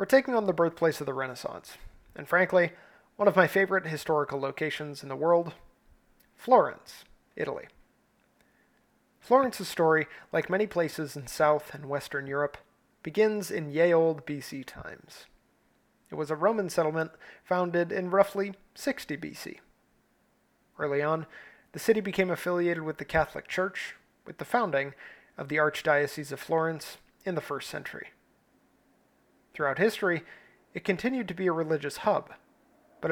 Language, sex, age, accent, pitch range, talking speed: English, male, 30-49, American, 155-195 Hz, 145 wpm